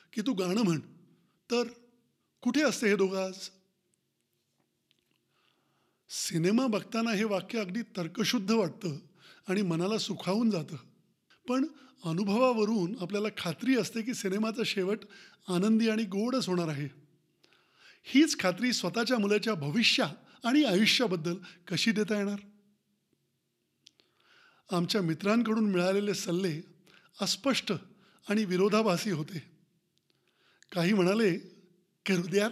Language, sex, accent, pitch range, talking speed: Marathi, male, native, 175-215 Hz, 100 wpm